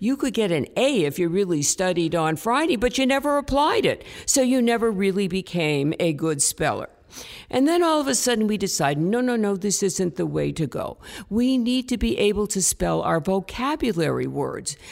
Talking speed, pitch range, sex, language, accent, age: 205 wpm, 180-255 Hz, female, English, American, 50-69